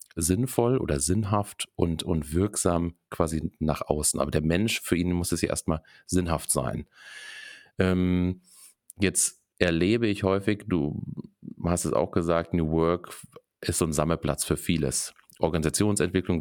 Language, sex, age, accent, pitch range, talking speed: German, male, 40-59, German, 75-95 Hz, 145 wpm